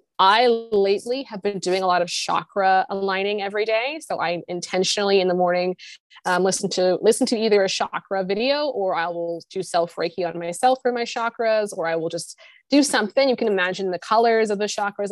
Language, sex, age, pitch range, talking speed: English, female, 20-39, 180-220 Hz, 205 wpm